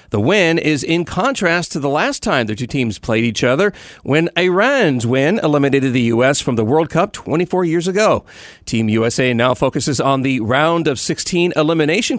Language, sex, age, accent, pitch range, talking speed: English, male, 40-59, American, 130-180 Hz, 185 wpm